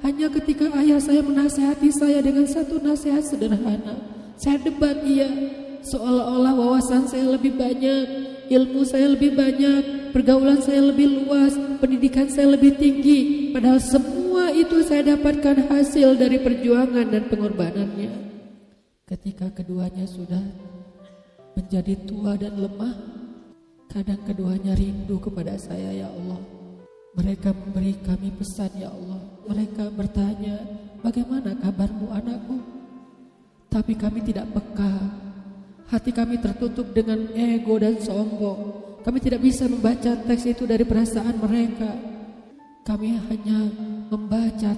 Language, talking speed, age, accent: Indonesian, 120 wpm, 40-59, native